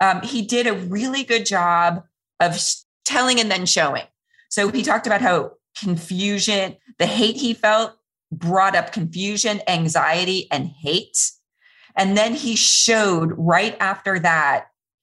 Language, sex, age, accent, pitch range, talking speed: English, female, 30-49, American, 170-220 Hz, 140 wpm